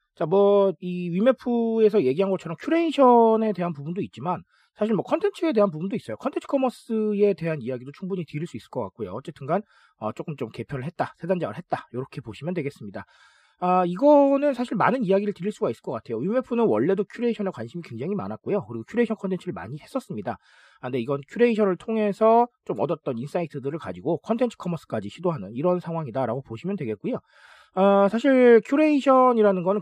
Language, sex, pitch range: Korean, male, 140-220 Hz